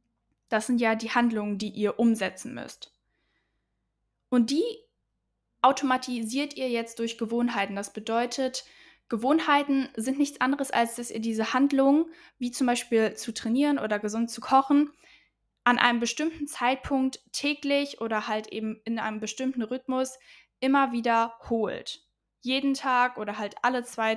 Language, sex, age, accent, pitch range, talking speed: German, female, 10-29, German, 225-265 Hz, 140 wpm